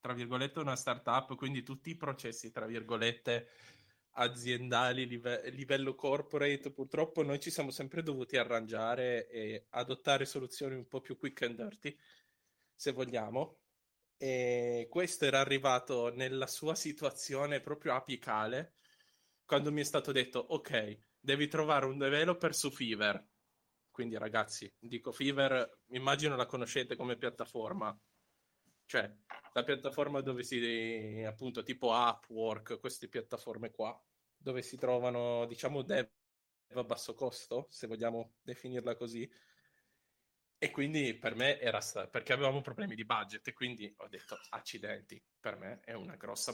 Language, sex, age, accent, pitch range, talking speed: Italian, male, 20-39, native, 120-140 Hz, 135 wpm